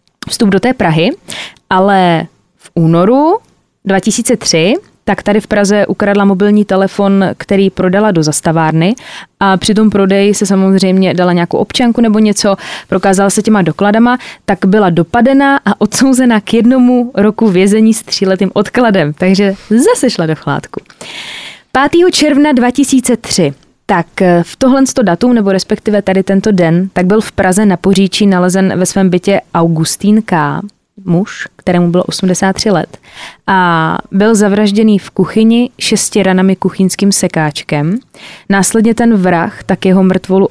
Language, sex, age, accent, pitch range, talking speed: Czech, female, 20-39, native, 185-215 Hz, 140 wpm